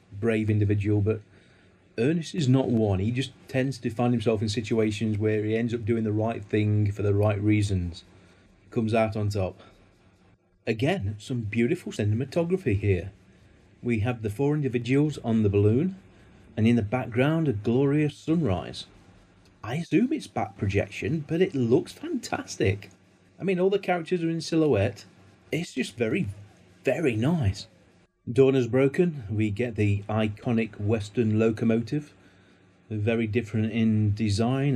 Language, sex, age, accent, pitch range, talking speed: English, male, 30-49, British, 100-125 Hz, 150 wpm